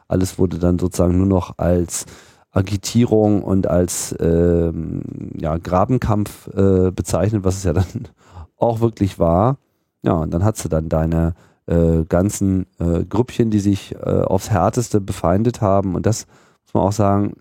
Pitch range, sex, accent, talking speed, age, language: 90-110 Hz, male, German, 160 wpm, 40-59, German